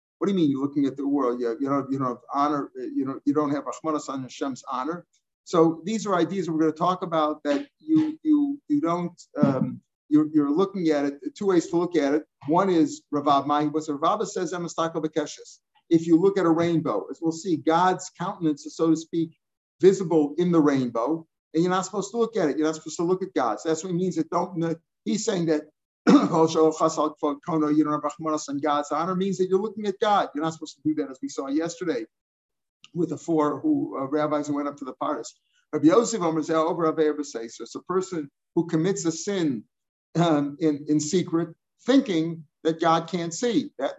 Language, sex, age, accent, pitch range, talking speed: English, male, 50-69, American, 150-180 Hz, 195 wpm